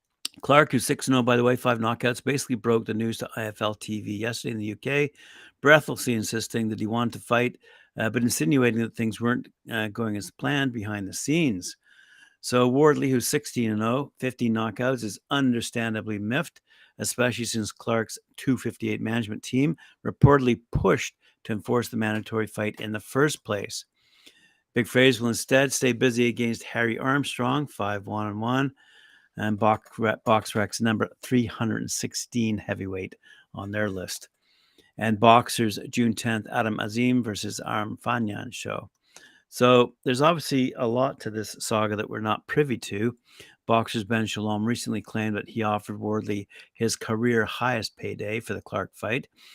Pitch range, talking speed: 110-125 Hz, 155 wpm